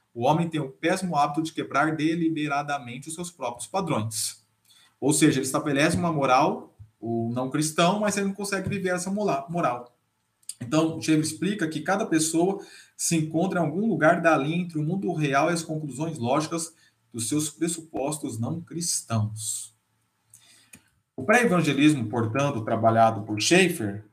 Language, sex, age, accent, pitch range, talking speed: Portuguese, male, 20-39, Brazilian, 125-190 Hz, 155 wpm